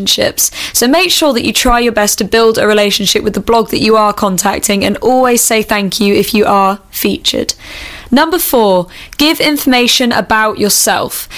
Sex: female